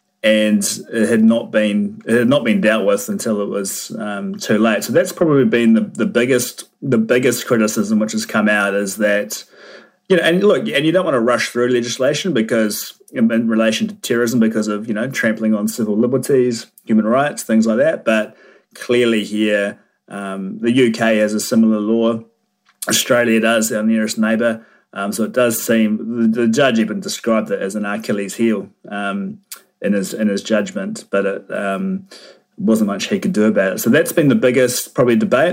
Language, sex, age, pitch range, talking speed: English, male, 30-49, 105-120 Hz, 200 wpm